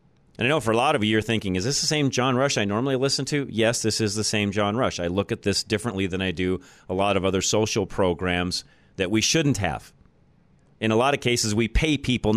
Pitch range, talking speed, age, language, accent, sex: 105-135 Hz, 255 wpm, 40-59, English, American, male